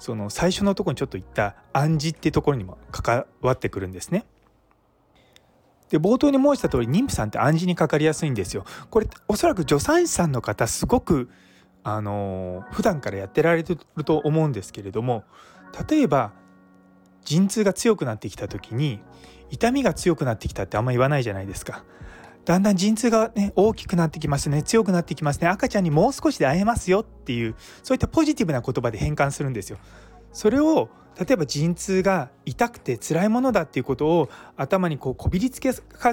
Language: Japanese